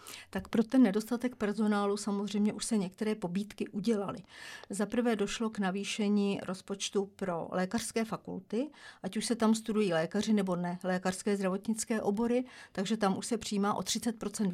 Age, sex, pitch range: 50-69, female, 190-220 Hz